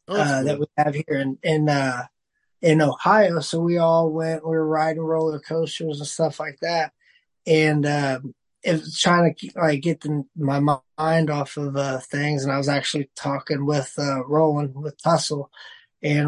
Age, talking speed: 20-39, 185 wpm